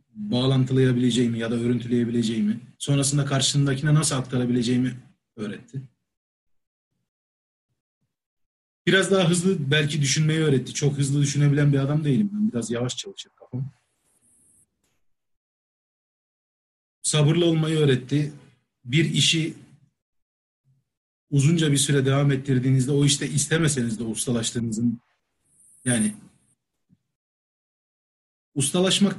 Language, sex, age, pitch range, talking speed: Turkish, male, 40-59, 120-155 Hz, 90 wpm